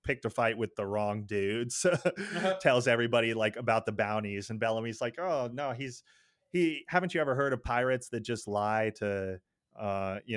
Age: 30-49